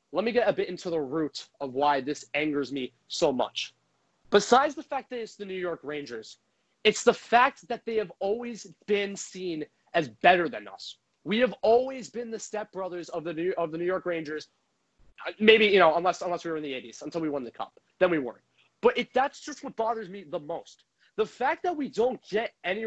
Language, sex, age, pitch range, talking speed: English, male, 30-49, 170-235 Hz, 215 wpm